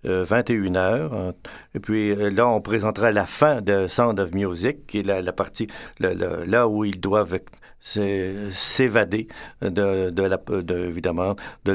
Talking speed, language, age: 160 wpm, French, 60-79